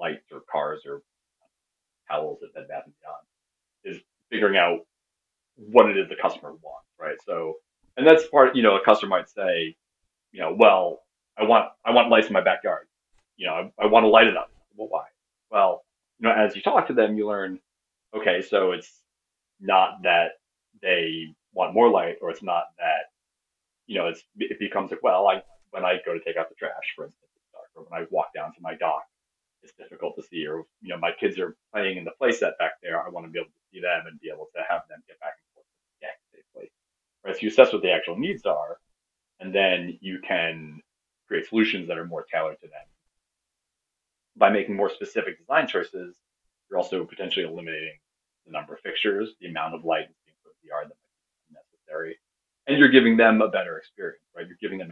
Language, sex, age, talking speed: English, male, 30-49, 210 wpm